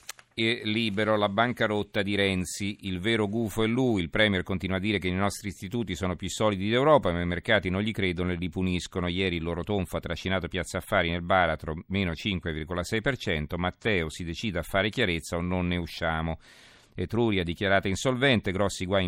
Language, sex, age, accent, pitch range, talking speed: Italian, male, 40-59, native, 85-105 Hz, 190 wpm